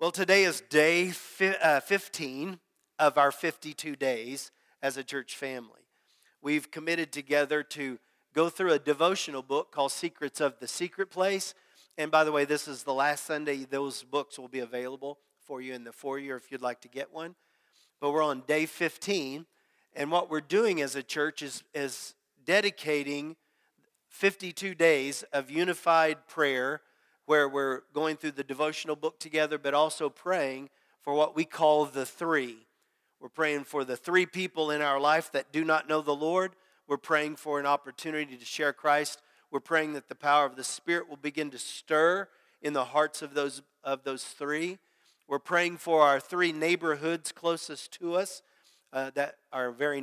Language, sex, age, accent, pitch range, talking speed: English, male, 40-59, American, 140-165 Hz, 180 wpm